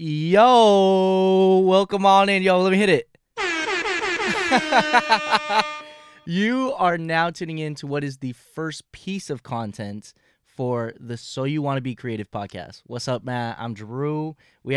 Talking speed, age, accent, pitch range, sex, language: 150 wpm, 20-39, American, 120-170 Hz, male, English